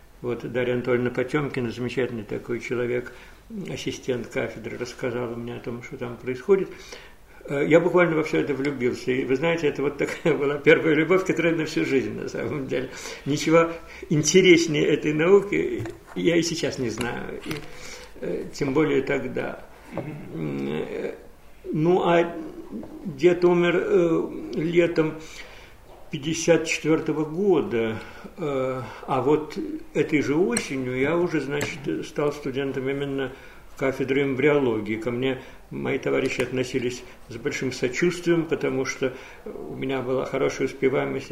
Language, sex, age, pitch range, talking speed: Russian, male, 50-69, 125-160 Hz, 125 wpm